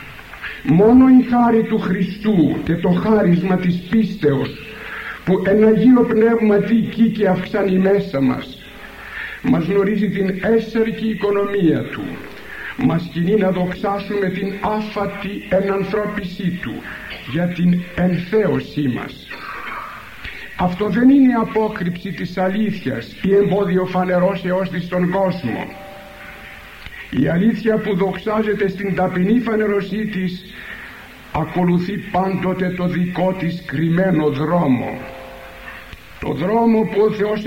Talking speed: 110 wpm